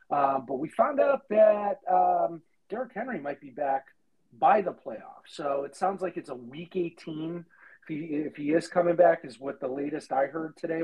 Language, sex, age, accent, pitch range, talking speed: English, male, 40-59, American, 145-180 Hz, 205 wpm